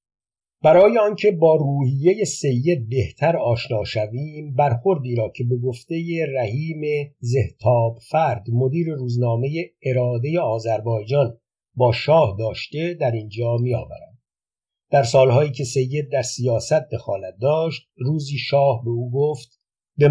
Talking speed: 120 wpm